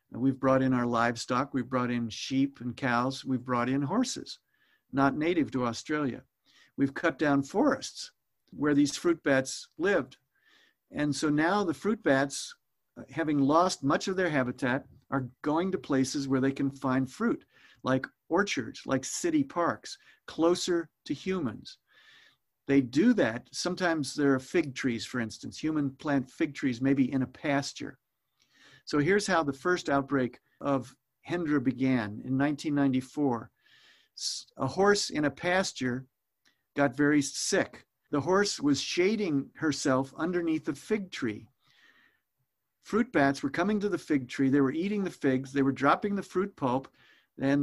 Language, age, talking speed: English, 50-69, 155 wpm